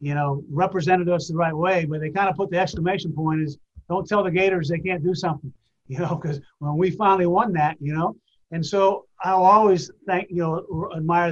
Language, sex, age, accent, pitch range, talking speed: English, male, 30-49, American, 160-185 Hz, 225 wpm